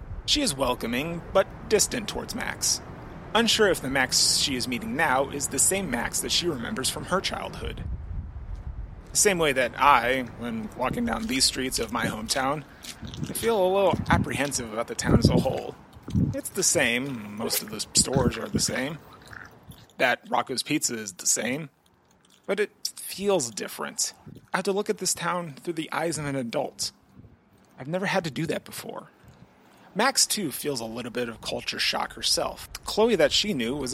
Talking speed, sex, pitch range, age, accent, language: 185 wpm, male, 120-170 Hz, 30-49, American, English